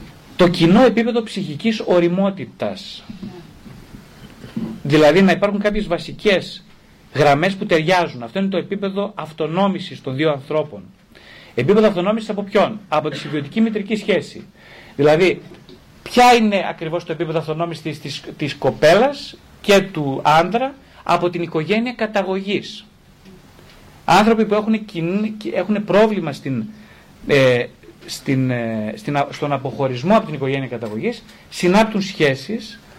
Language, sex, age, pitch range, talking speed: Greek, male, 40-59, 155-205 Hz, 120 wpm